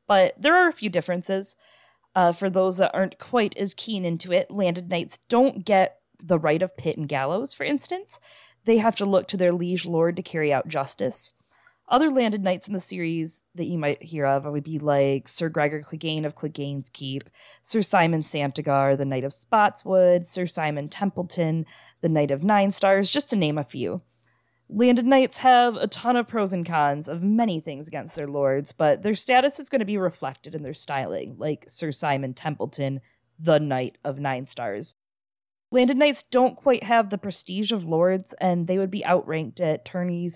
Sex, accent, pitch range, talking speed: female, American, 150-210 Hz, 195 wpm